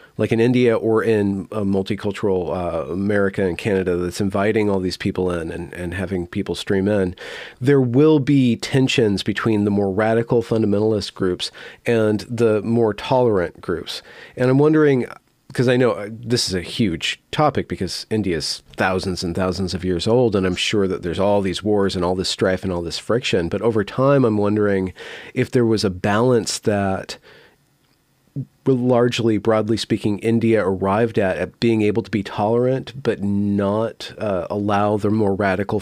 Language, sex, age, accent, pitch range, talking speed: English, male, 40-59, American, 95-120 Hz, 175 wpm